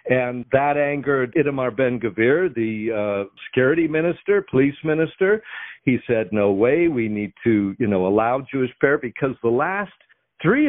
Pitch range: 115-145 Hz